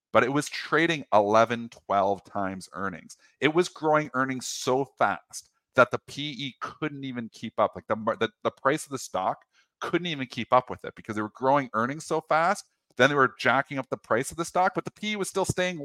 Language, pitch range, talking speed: English, 110-155 Hz, 220 wpm